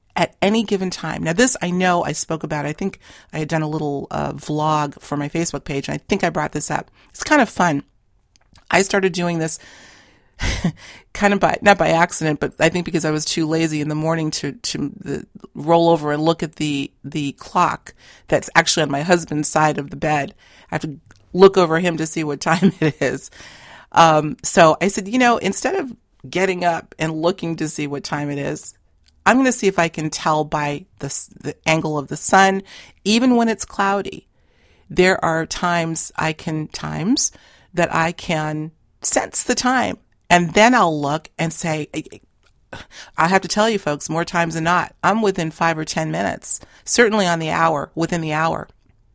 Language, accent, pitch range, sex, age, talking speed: English, American, 150-185 Hz, female, 40-59, 200 wpm